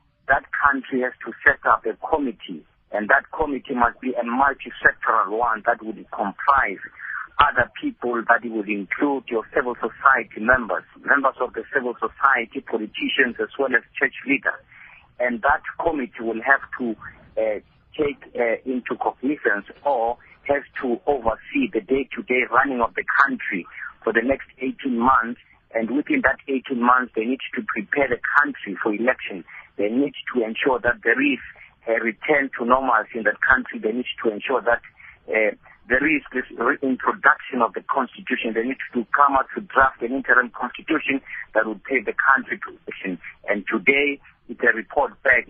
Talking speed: 170 wpm